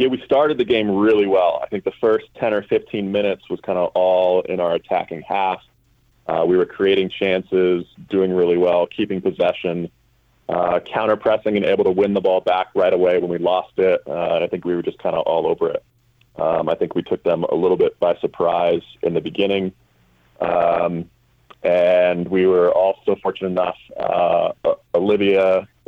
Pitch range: 85-115 Hz